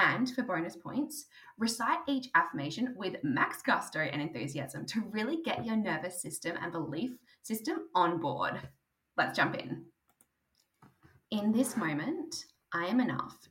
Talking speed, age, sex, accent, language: 140 wpm, 10-29, female, Australian, English